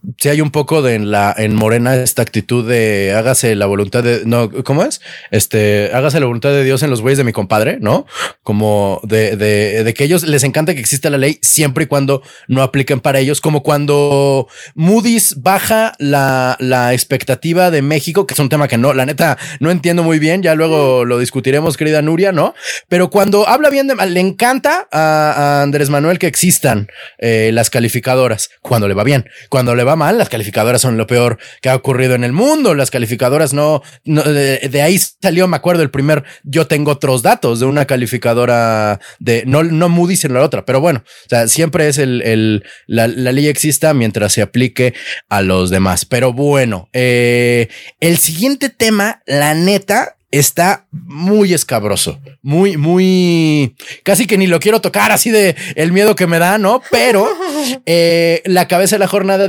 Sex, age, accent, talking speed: male, 30-49, Mexican, 195 wpm